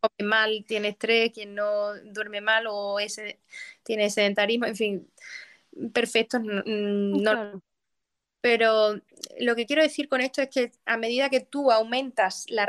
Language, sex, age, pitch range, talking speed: Spanish, female, 20-39, 215-265 Hz, 145 wpm